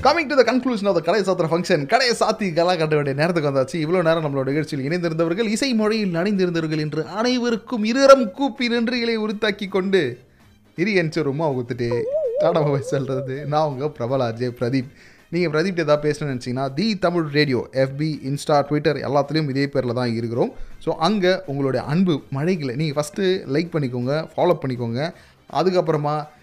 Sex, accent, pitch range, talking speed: male, native, 140-185 Hz, 150 wpm